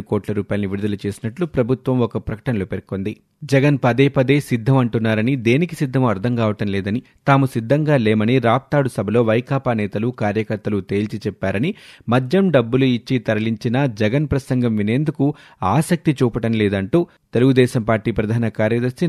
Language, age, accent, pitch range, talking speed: Telugu, 30-49, native, 110-135 Hz, 125 wpm